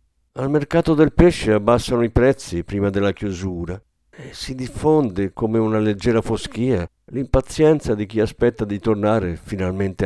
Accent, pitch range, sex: native, 90-125 Hz, male